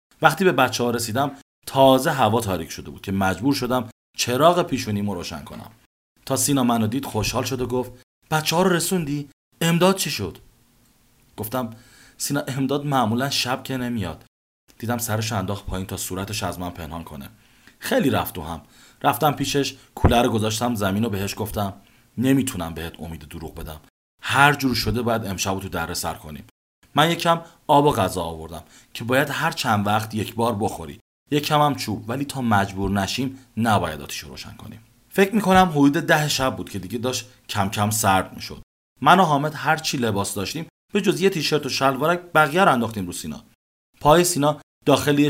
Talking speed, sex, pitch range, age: 175 wpm, male, 100-140 Hz, 30-49